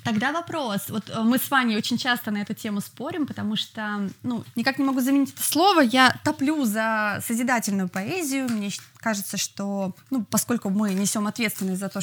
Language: Russian